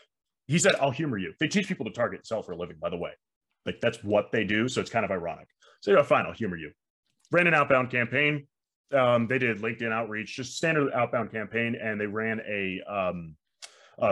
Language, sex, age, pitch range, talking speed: English, male, 30-49, 110-145 Hz, 230 wpm